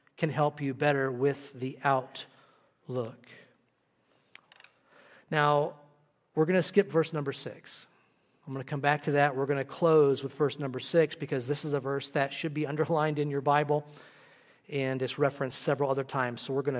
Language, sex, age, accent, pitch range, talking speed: English, male, 40-59, American, 140-180 Hz, 180 wpm